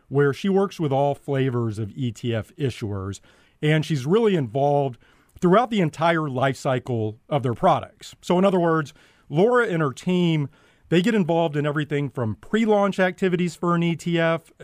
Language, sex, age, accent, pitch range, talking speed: English, male, 40-59, American, 130-175 Hz, 165 wpm